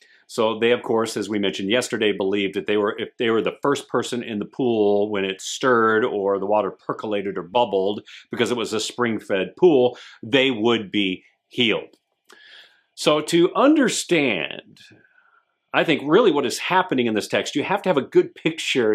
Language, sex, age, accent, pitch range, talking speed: English, male, 40-59, American, 110-155 Hz, 185 wpm